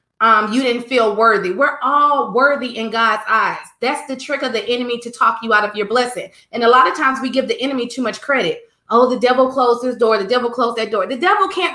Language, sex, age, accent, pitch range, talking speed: English, female, 30-49, American, 220-275 Hz, 255 wpm